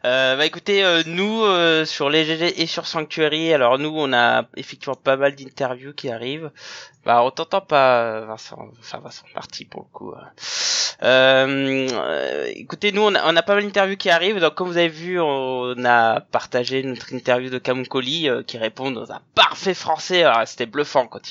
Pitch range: 130-160 Hz